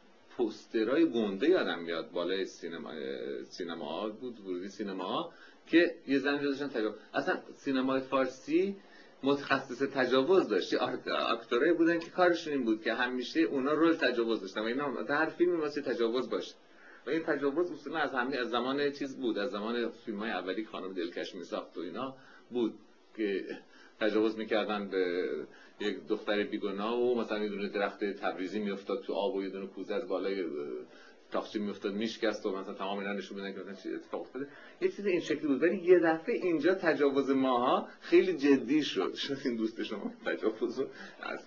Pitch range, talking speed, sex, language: 110-180 Hz, 170 wpm, male, Persian